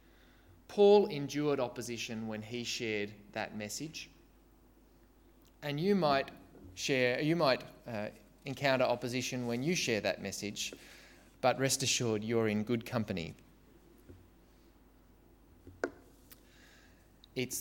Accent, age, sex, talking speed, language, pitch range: Australian, 20-39, male, 100 wpm, English, 100-140 Hz